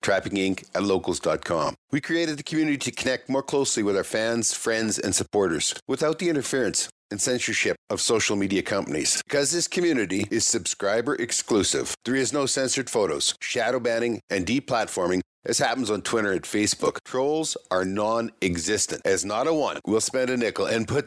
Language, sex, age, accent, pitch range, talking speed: English, male, 50-69, American, 105-135 Hz, 175 wpm